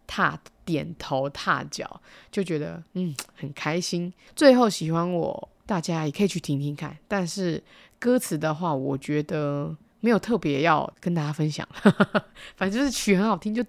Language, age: Chinese, 20-39